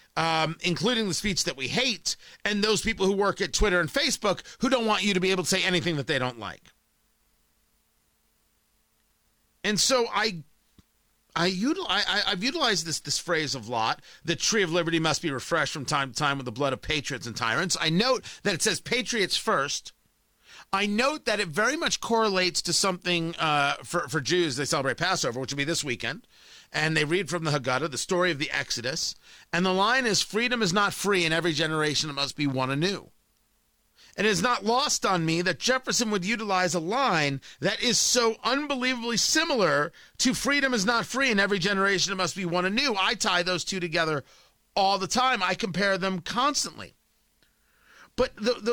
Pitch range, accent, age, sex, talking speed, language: 160-220 Hz, American, 40-59, male, 200 wpm, English